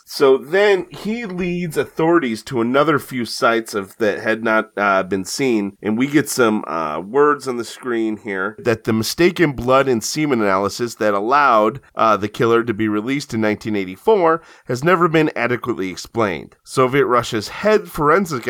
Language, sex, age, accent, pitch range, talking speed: English, male, 30-49, American, 110-145 Hz, 170 wpm